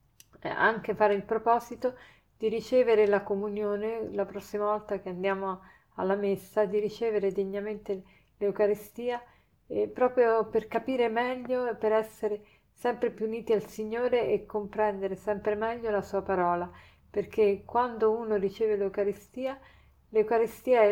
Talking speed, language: 125 wpm, Italian